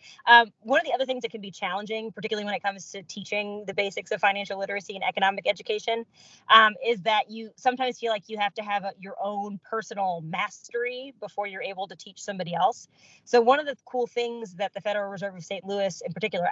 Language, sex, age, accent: English, female, 20-39, American